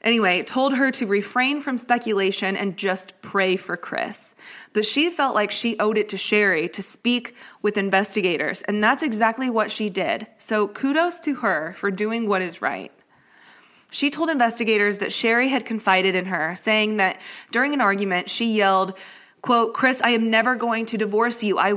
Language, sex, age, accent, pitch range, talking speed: English, female, 20-39, American, 195-245 Hz, 180 wpm